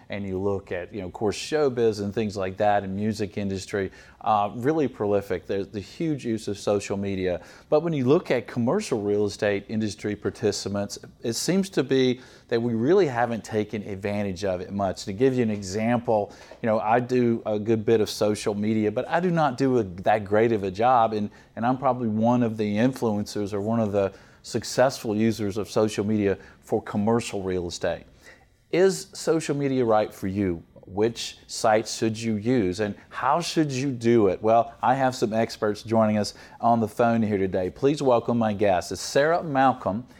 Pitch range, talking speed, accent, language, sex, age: 100-125 Hz, 195 wpm, American, English, male, 40-59